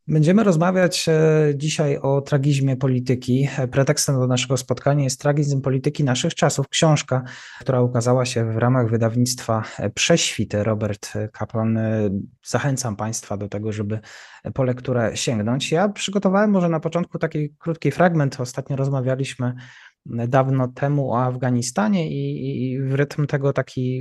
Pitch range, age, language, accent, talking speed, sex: 125-155 Hz, 20-39, Polish, native, 130 wpm, male